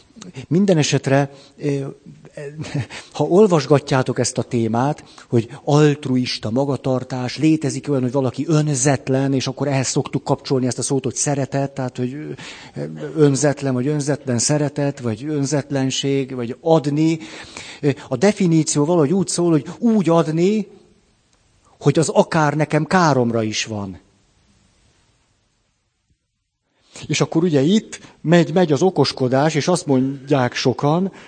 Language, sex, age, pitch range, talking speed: Hungarian, male, 50-69, 125-160 Hz, 115 wpm